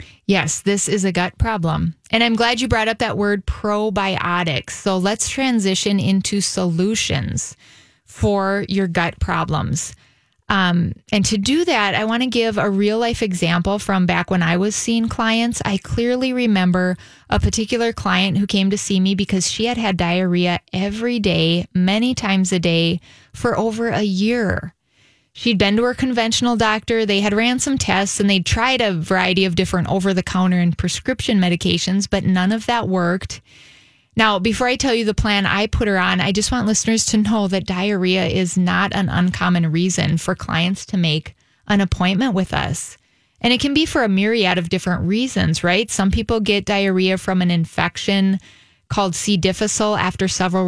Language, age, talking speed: English, 20-39, 180 wpm